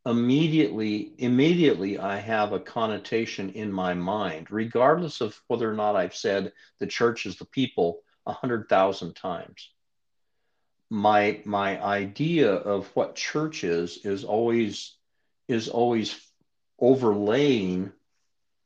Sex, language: male, English